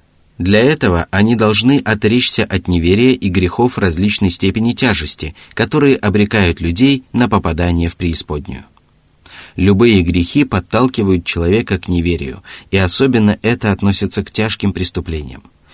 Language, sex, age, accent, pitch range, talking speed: Russian, male, 30-49, native, 85-110 Hz, 120 wpm